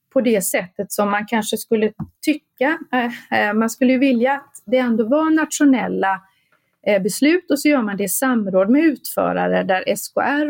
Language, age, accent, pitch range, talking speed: Swedish, 30-49, native, 195-275 Hz, 160 wpm